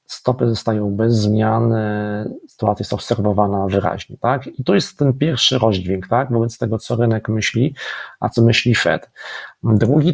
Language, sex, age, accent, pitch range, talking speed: Polish, male, 40-59, native, 105-130 Hz, 155 wpm